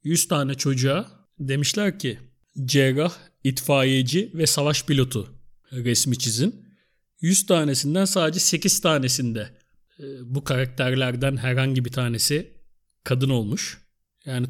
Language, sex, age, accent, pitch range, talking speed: Turkish, male, 40-59, native, 130-160 Hz, 105 wpm